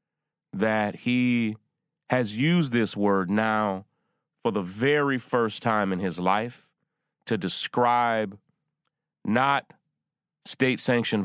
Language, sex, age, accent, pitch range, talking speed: English, male, 30-49, American, 95-120 Hz, 100 wpm